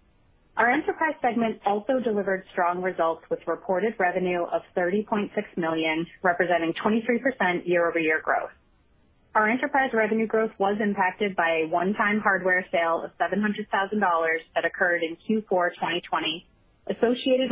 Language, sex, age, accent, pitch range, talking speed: English, female, 30-49, American, 175-215 Hz, 120 wpm